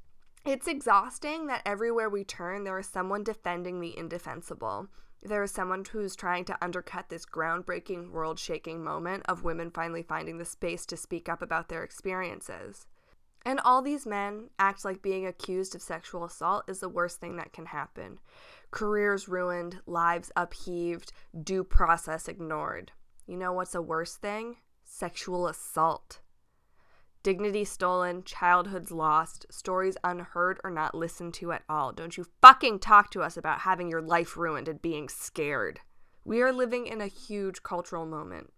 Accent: American